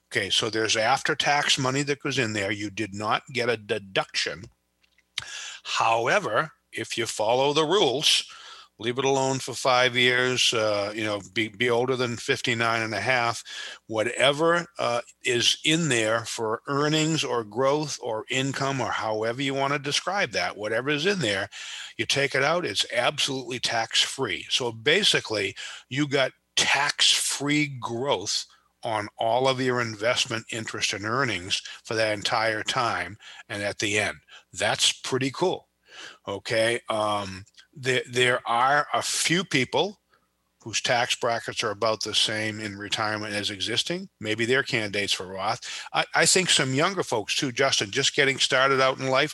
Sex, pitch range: male, 110-140 Hz